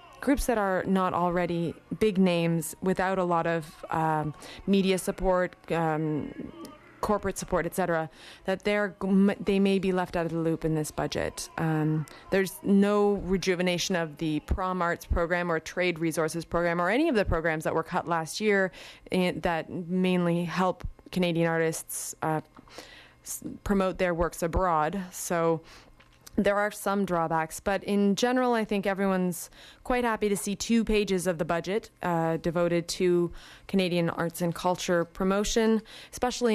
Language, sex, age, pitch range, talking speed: English, female, 20-39, 170-205 Hz, 160 wpm